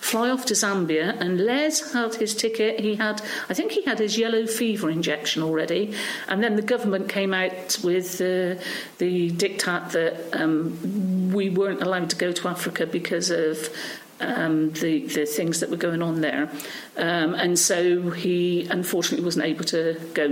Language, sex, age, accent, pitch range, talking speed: English, female, 50-69, British, 180-230 Hz, 175 wpm